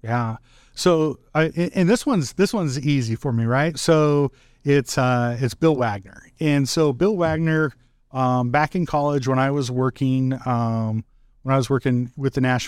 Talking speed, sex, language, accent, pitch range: 180 wpm, male, English, American, 120-145 Hz